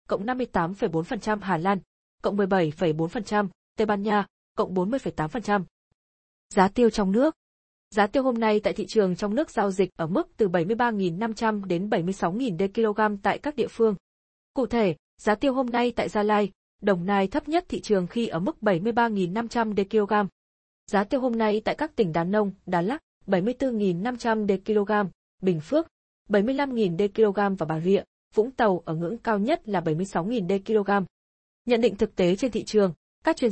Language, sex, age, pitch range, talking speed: Vietnamese, female, 20-39, 185-235 Hz, 180 wpm